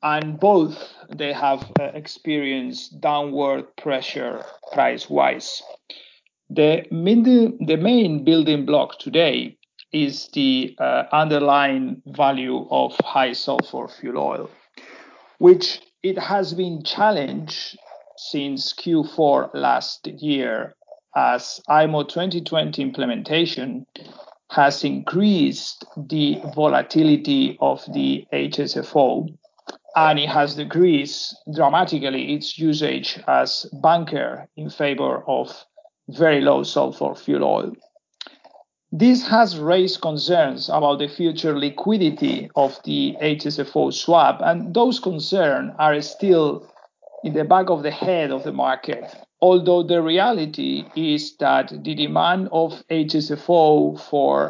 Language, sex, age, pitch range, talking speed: English, male, 50-69, 145-185 Hz, 110 wpm